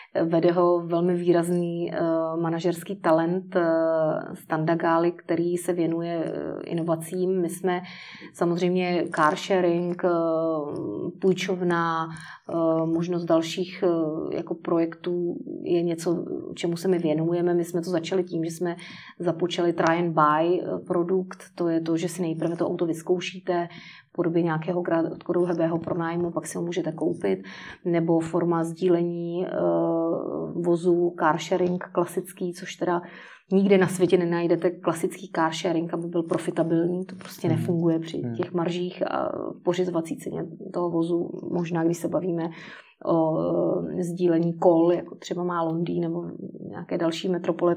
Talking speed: 130 wpm